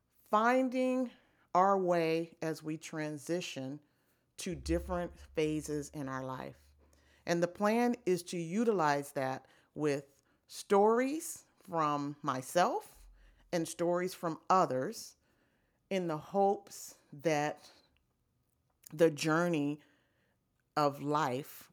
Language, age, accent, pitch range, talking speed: English, 40-59, American, 135-170 Hz, 95 wpm